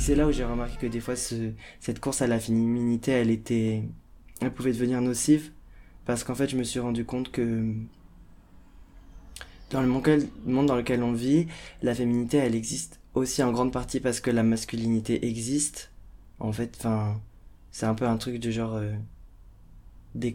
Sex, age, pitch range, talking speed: male, 20-39, 115-130 Hz, 185 wpm